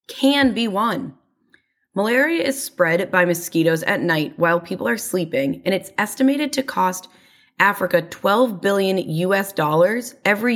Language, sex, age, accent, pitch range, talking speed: English, female, 20-39, American, 175-230 Hz, 140 wpm